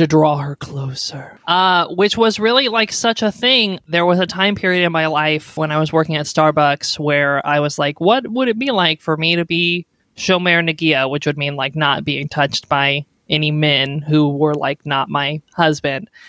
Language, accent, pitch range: English, American, 155-195 Hz